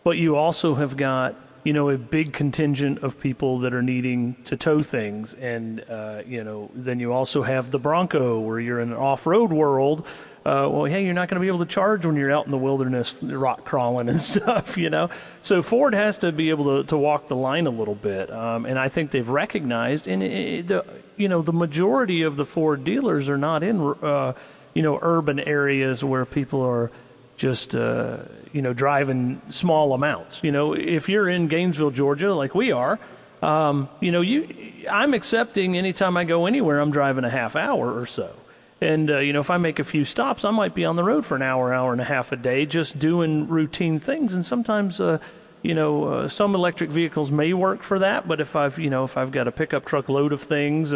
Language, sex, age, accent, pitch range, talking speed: English, male, 40-59, American, 130-170 Hz, 225 wpm